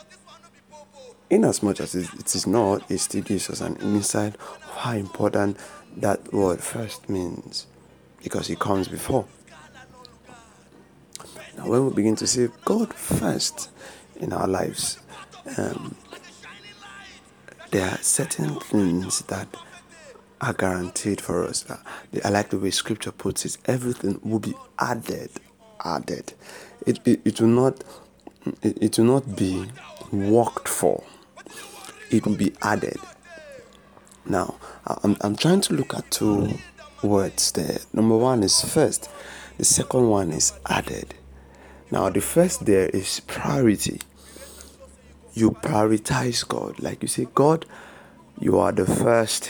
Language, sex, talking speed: English, male, 125 wpm